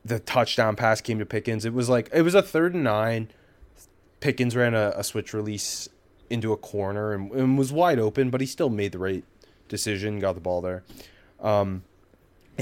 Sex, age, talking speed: male, 20-39, 200 wpm